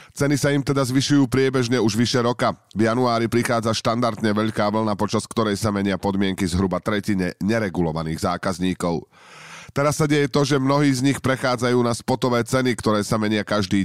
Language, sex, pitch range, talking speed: Slovak, male, 95-125 Hz, 175 wpm